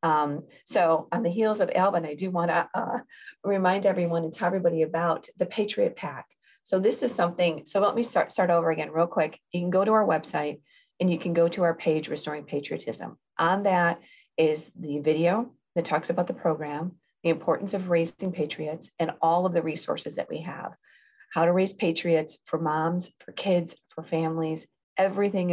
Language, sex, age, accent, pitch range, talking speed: English, female, 40-59, American, 160-185 Hz, 195 wpm